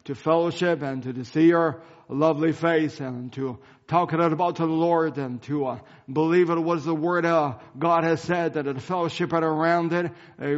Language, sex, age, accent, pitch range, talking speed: English, male, 40-59, American, 135-160 Hz, 200 wpm